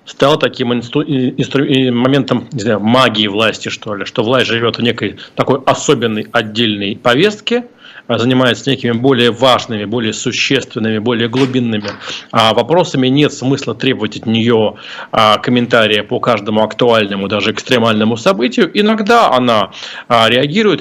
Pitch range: 115-140 Hz